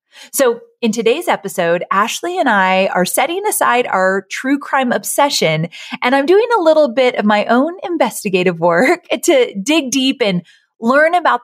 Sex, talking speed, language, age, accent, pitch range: female, 165 wpm, English, 30-49, American, 185-255 Hz